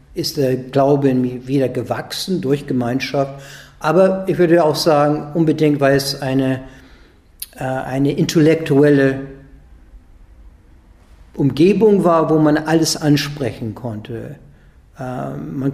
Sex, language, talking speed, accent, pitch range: male, German, 110 wpm, German, 130-155 Hz